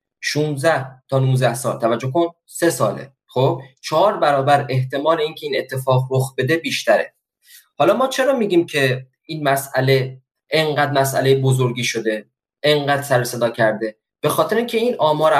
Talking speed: 150 wpm